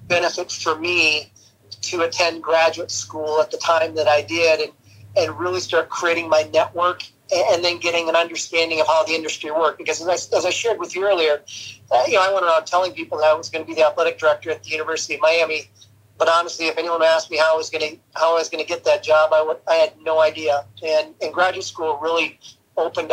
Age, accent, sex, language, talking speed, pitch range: 40-59, American, male, English, 240 wpm, 155-170 Hz